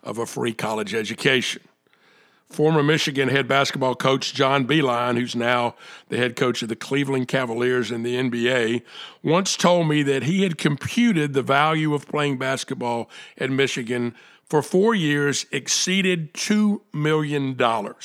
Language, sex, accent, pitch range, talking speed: English, male, American, 125-160 Hz, 145 wpm